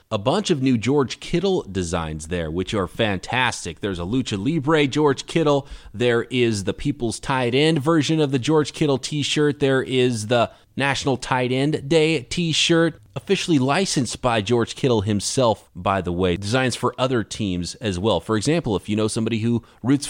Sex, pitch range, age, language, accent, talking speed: male, 110-145 Hz, 30-49, English, American, 180 wpm